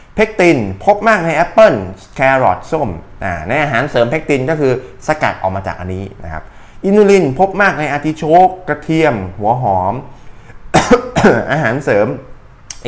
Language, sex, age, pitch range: Thai, male, 20-39, 105-155 Hz